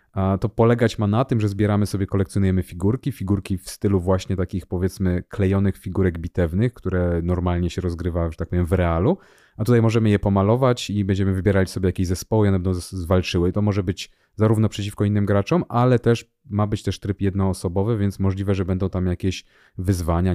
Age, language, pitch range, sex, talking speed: 30-49, Polish, 100-115 Hz, male, 190 wpm